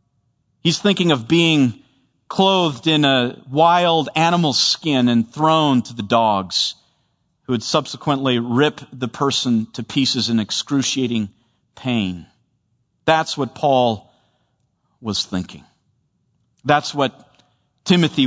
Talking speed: 110 wpm